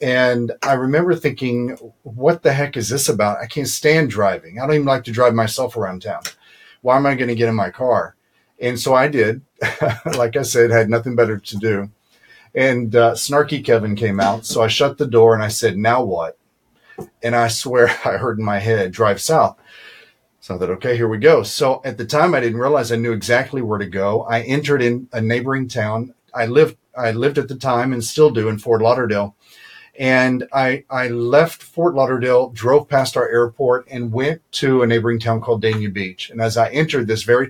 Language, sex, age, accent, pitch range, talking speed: English, male, 40-59, American, 115-135 Hz, 215 wpm